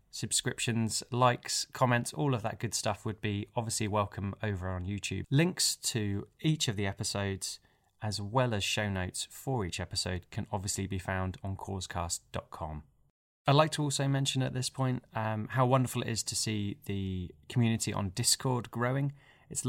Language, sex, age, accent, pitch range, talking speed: English, male, 20-39, British, 95-125 Hz, 170 wpm